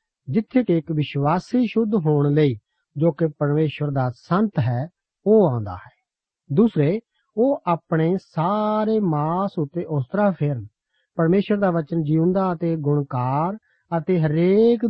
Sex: male